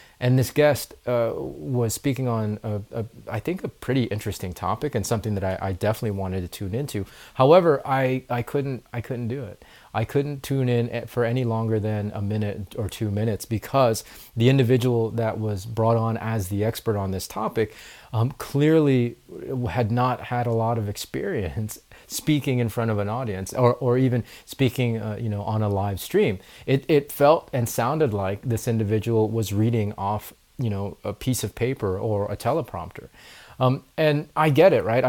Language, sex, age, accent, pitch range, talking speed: English, male, 30-49, American, 105-125 Hz, 190 wpm